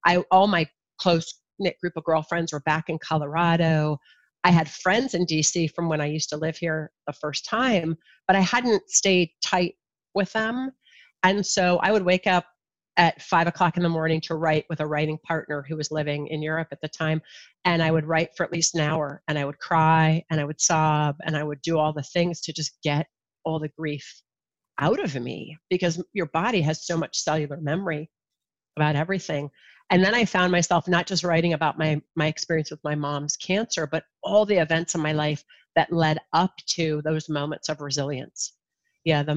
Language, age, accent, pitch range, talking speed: English, 40-59, American, 155-175 Hz, 205 wpm